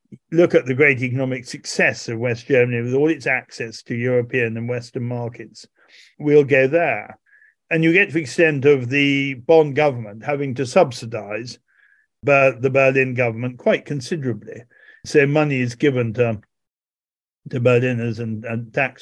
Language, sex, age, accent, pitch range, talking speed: English, male, 50-69, British, 120-165 Hz, 160 wpm